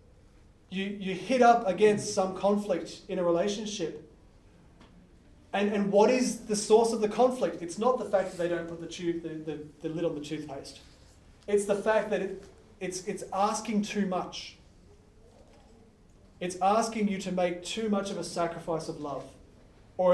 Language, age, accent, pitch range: English, 30-49, Australian, 150-205 Hz